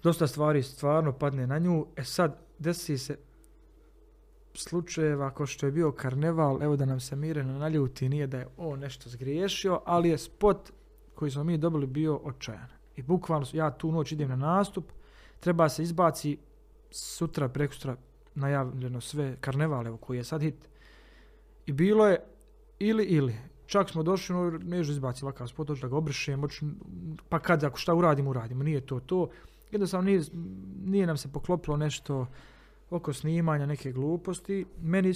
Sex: male